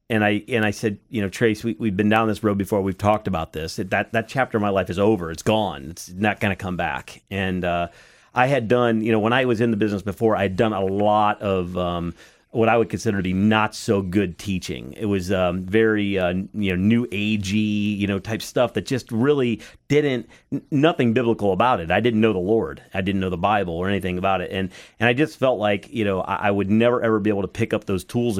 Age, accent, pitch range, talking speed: 40-59, American, 95-115 Hz, 255 wpm